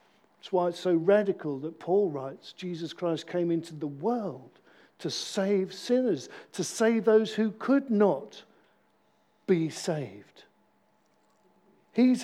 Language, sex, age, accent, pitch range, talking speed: English, male, 50-69, British, 180-245 Hz, 125 wpm